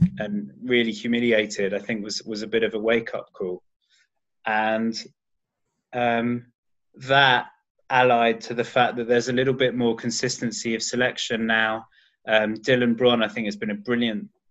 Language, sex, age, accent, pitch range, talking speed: English, male, 20-39, British, 105-120 Hz, 165 wpm